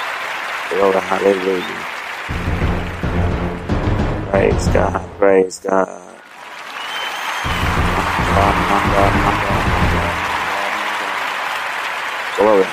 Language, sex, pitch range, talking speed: English, male, 95-115 Hz, 90 wpm